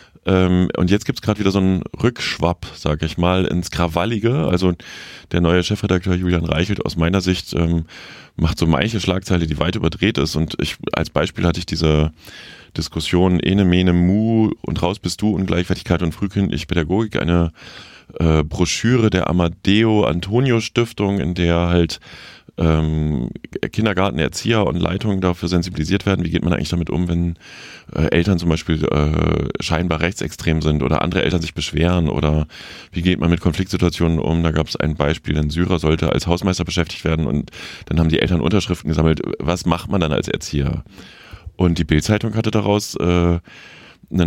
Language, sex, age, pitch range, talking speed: German, male, 30-49, 80-95 Hz, 170 wpm